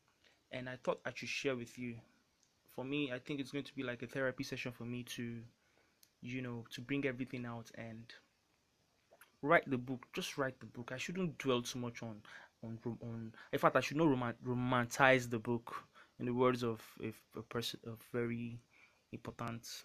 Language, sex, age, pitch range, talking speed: English, male, 20-39, 115-135 Hz, 190 wpm